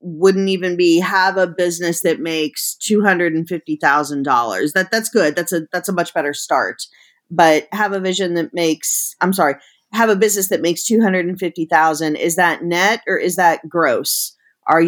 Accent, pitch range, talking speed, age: American, 160-190 Hz, 165 wpm, 30-49